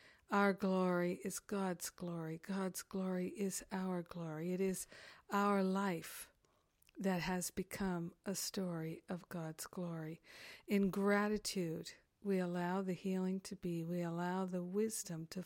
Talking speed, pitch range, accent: 135 wpm, 170-200 Hz, American